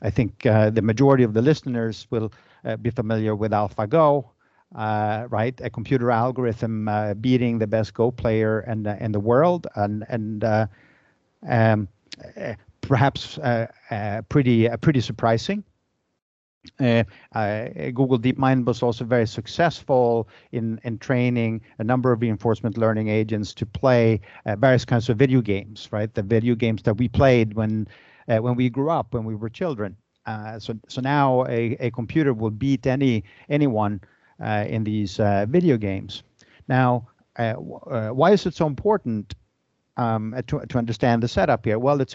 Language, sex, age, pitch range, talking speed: English, male, 50-69, 110-130 Hz, 170 wpm